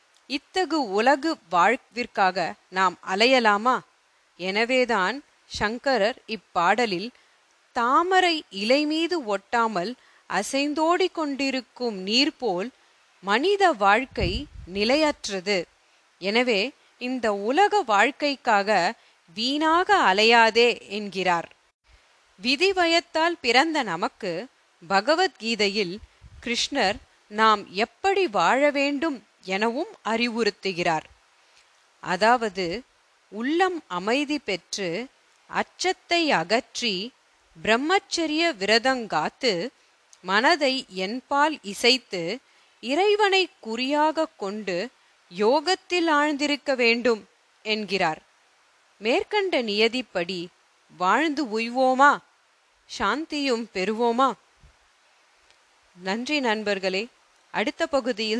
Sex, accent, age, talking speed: female, native, 30-49, 60 wpm